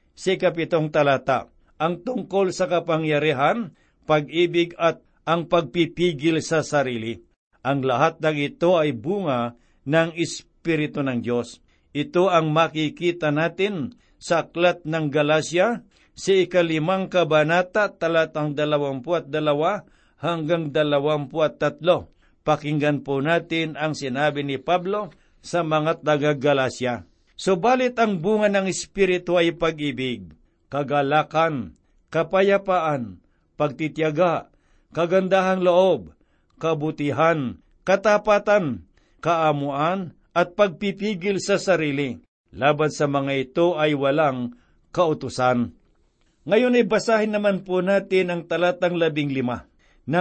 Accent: native